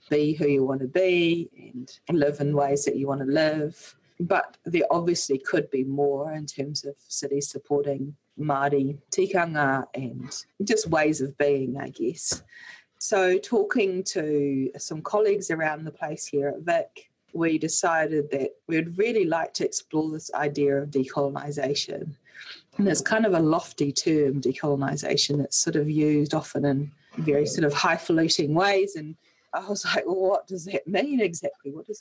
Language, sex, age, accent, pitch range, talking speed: English, female, 30-49, Australian, 145-185 Hz, 165 wpm